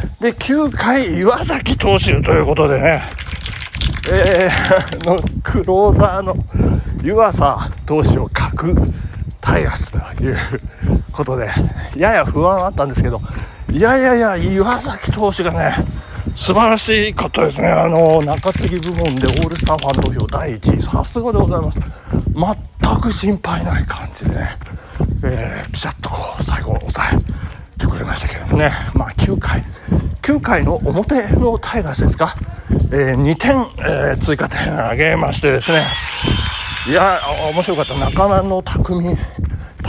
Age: 40-59